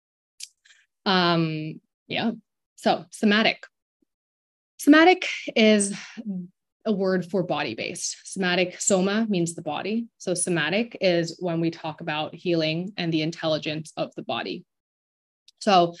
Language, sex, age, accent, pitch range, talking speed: English, female, 20-39, American, 165-215 Hz, 115 wpm